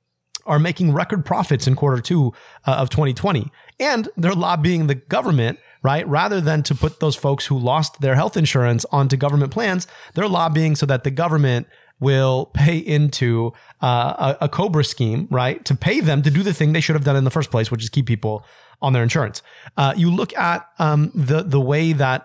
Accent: American